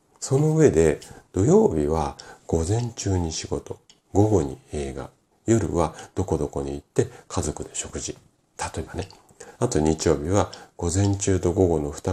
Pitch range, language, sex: 80-100 Hz, Japanese, male